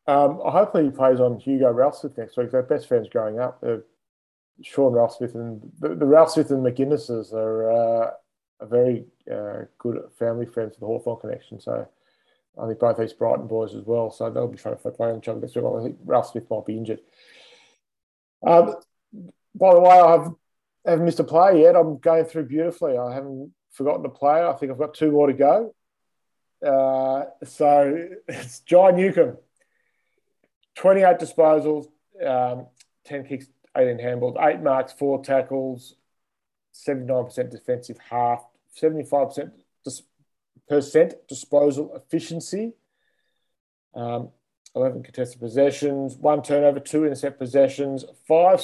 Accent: Australian